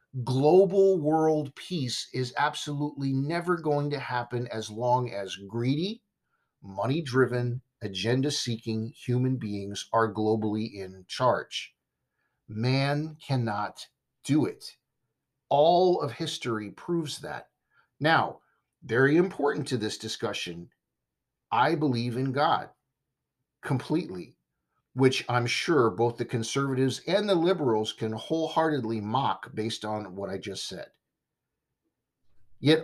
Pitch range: 110-150 Hz